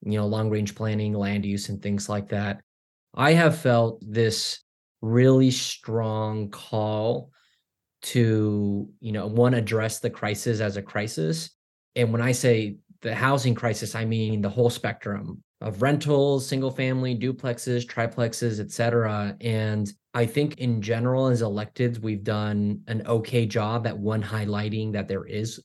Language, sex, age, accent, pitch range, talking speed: English, male, 30-49, American, 105-125 Hz, 145 wpm